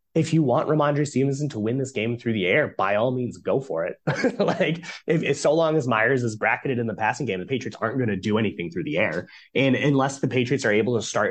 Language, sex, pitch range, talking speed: English, male, 110-145 Hz, 260 wpm